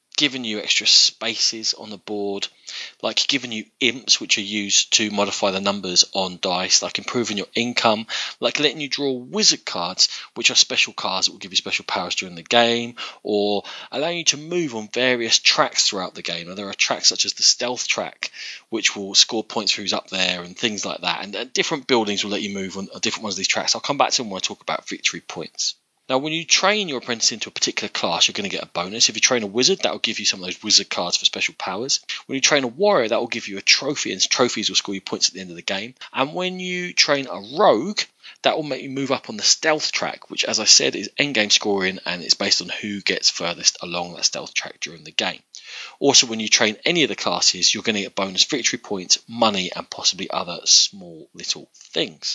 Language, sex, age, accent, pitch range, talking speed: English, male, 20-39, British, 100-135 Hz, 250 wpm